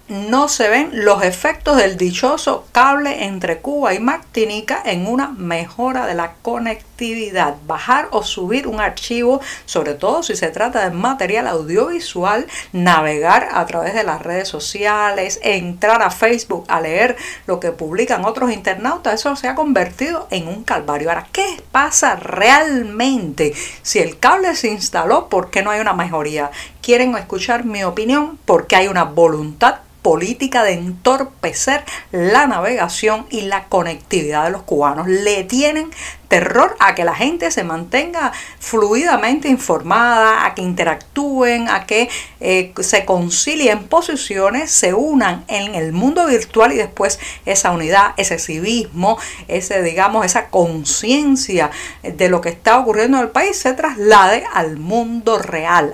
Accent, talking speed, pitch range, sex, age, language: American, 150 wpm, 180-255 Hz, female, 50-69, Spanish